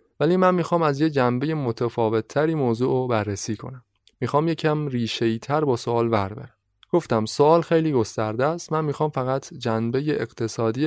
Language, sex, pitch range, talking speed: Persian, male, 115-150 Hz, 155 wpm